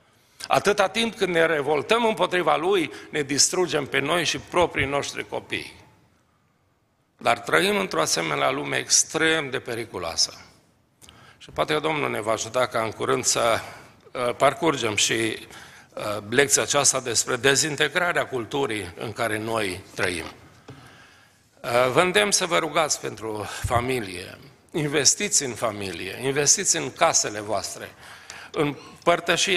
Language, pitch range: Romanian, 125-165 Hz